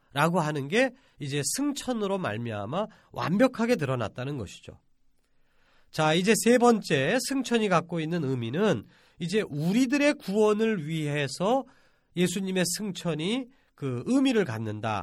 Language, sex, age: Korean, male, 40-59